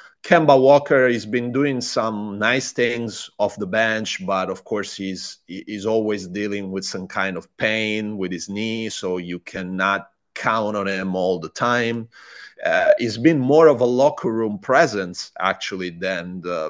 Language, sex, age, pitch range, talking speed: English, male, 30-49, 95-115 Hz, 165 wpm